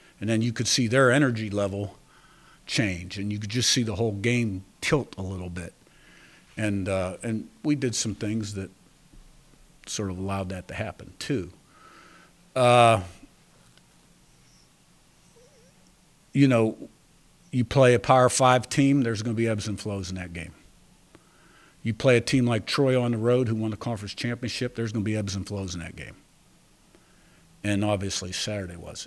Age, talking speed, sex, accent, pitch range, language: 50-69, 170 wpm, male, American, 95-120 Hz, English